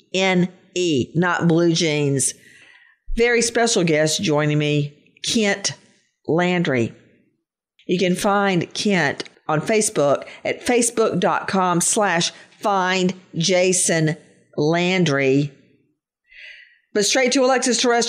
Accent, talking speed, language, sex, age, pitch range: American, 85 wpm, English, female, 50-69, 185-260 Hz